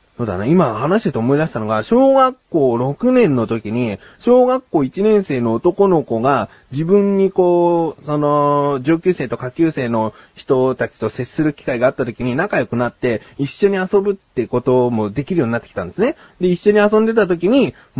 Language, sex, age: Japanese, male, 30-49